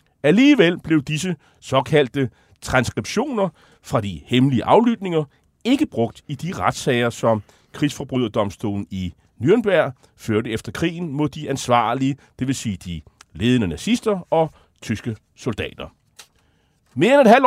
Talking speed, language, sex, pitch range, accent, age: 125 wpm, Danish, male, 110-165 Hz, native, 40-59